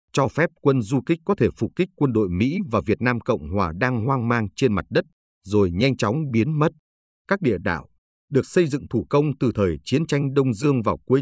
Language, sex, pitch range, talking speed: Vietnamese, male, 100-140 Hz, 235 wpm